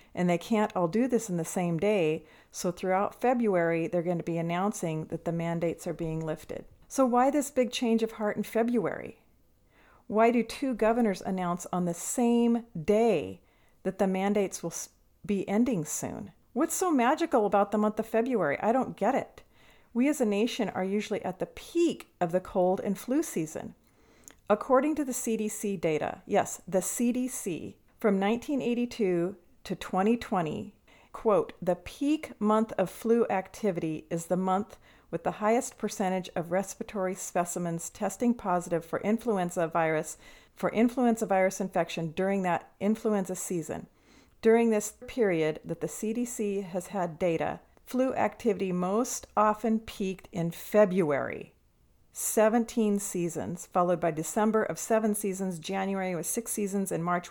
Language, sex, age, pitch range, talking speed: English, female, 40-59, 180-230 Hz, 155 wpm